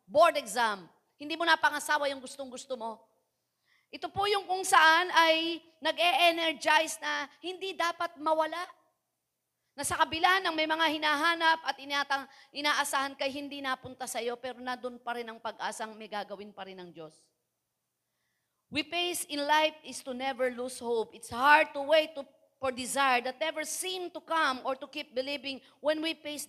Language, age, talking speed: Filipino, 40-59, 170 wpm